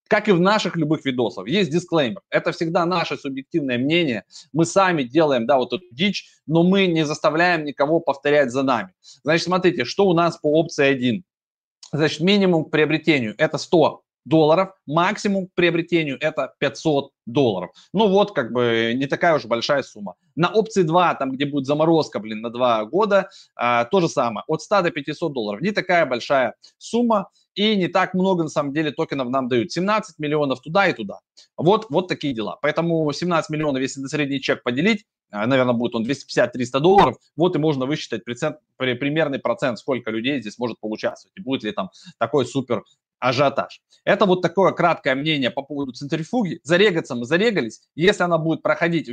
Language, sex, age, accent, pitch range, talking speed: Russian, male, 20-39, native, 140-180 Hz, 175 wpm